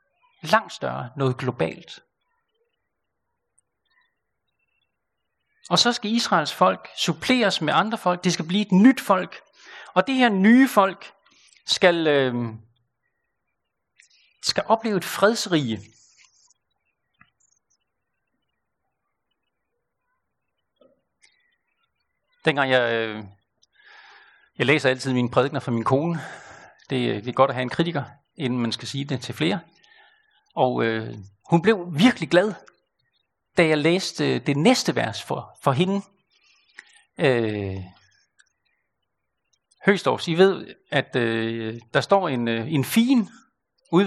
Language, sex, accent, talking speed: Danish, male, native, 110 wpm